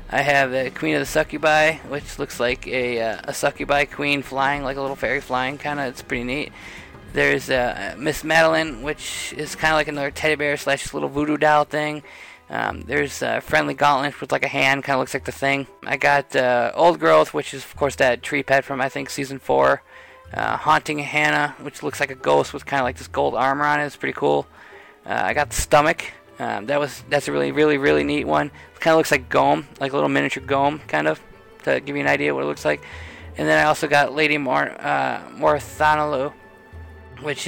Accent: American